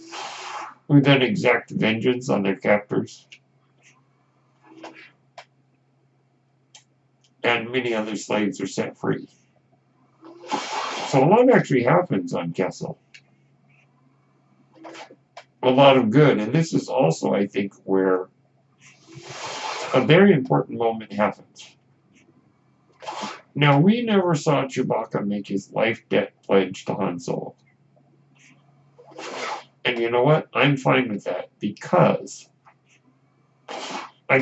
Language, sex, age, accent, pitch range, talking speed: English, male, 60-79, American, 100-140 Hz, 105 wpm